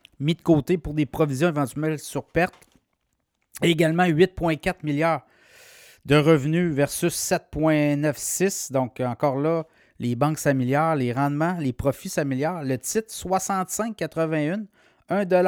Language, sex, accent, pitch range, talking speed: French, male, Canadian, 140-170 Hz, 115 wpm